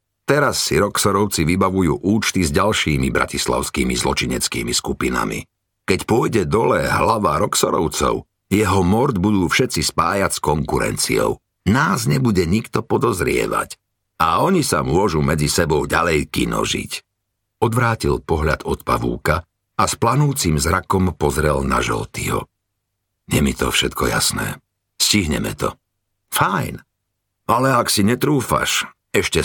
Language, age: Slovak, 50-69